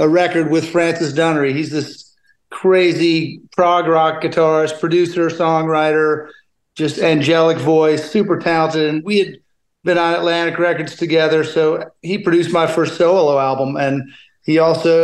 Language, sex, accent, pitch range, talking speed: English, male, American, 155-170 Hz, 145 wpm